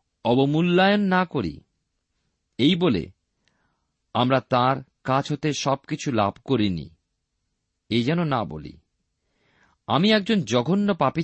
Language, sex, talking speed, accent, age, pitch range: Bengali, male, 100 wpm, native, 50-69, 105-155 Hz